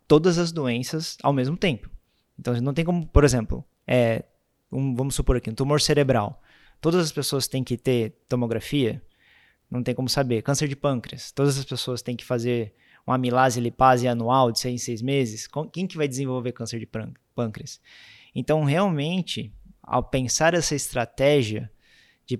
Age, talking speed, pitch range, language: 20-39, 170 wpm, 120-150 Hz, Portuguese